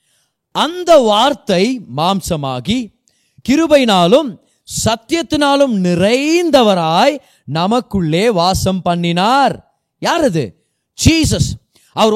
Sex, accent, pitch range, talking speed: male, native, 170-250 Hz, 65 wpm